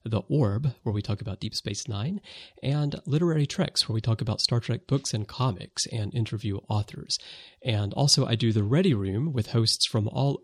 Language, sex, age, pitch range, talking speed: English, male, 30-49, 105-140 Hz, 200 wpm